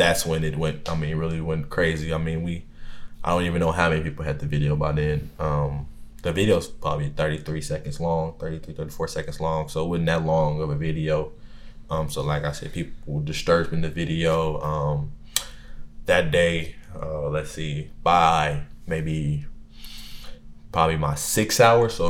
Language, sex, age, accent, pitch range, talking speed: English, male, 20-39, American, 75-85 Hz, 180 wpm